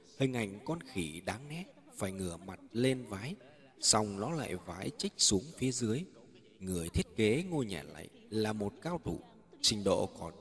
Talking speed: 185 wpm